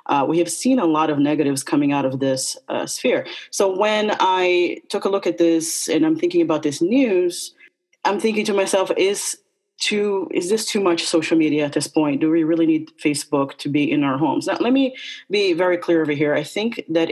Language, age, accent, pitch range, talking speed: English, 30-49, American, 155-225 Hz, 225 wpm